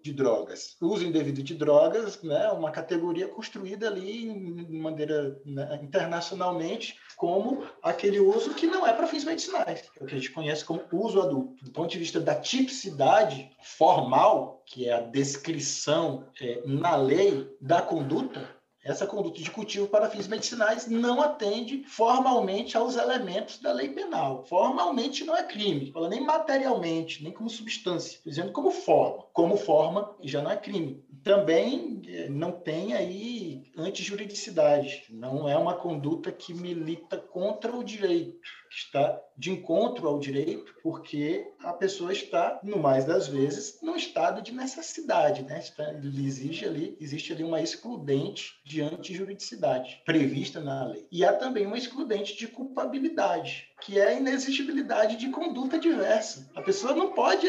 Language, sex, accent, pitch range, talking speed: Portuguese, male, Brazilian, 155-250 Hz, 150 wpm